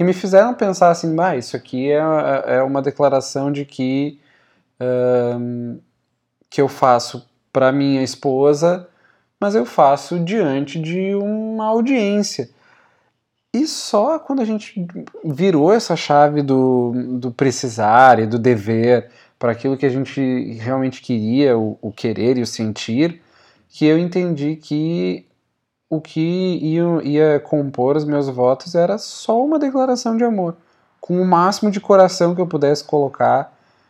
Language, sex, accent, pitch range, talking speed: Portuguese, male, Brazilian, 120-175 Hz, 145 wpm